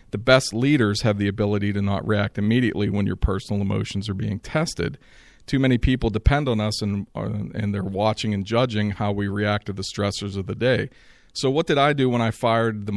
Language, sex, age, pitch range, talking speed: English, male, 40-59, 100-115 Hz, 220 wpm